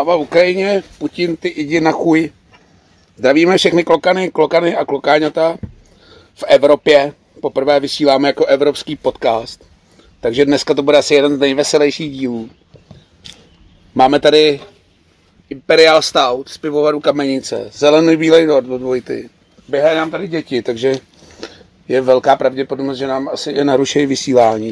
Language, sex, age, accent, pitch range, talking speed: Czech, male, 40-59, native, 130-150 Hz, 135 wpm